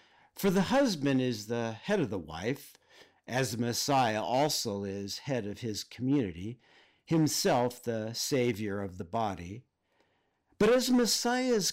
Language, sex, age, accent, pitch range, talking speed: English, male, 50-69, American, 115-175 Hz, 135 wpm